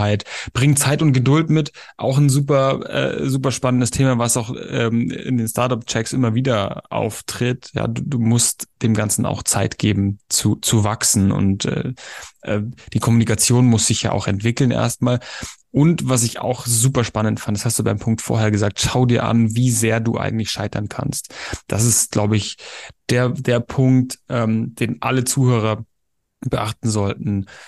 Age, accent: 10-29, German